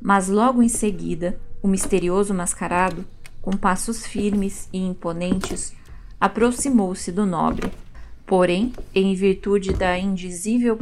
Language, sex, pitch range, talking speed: Portuguese, female, 180-220 Hz, 110 wpm